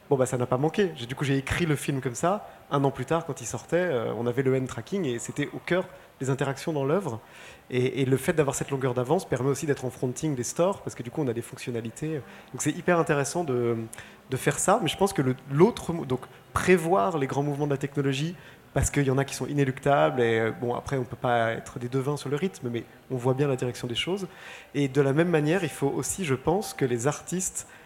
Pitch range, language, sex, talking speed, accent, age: 130-160 Hz, French, male, 260 wpm, French, 30-49